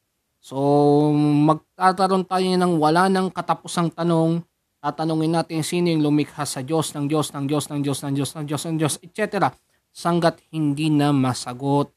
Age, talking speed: 20-39, 160 wpm